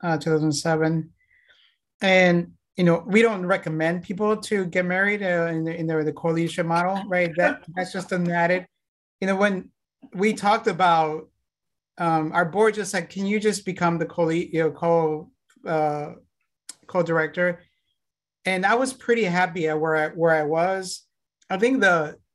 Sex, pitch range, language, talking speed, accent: male, 155-180 Hz, English, 170 wpm, American